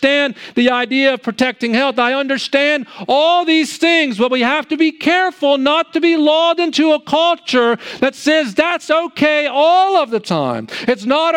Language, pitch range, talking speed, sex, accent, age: English, 235-315 Hz, 180 wpm, male, American, 50-69